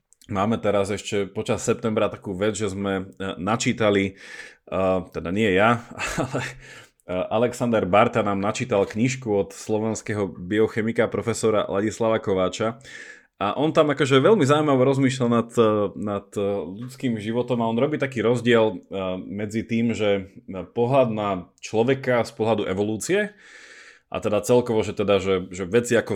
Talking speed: 130 wpm